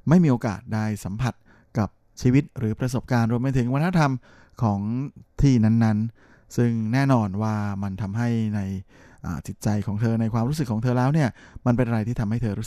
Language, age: Thai, 20-39